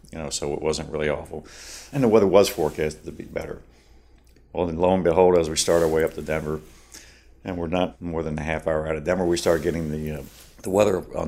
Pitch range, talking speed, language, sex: 75-90 Hz, 250 wpm, English, male